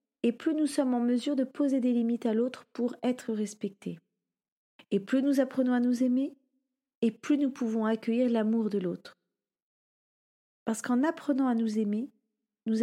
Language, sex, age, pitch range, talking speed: French, female, 30-49, 220-260 Hz, 175 wpm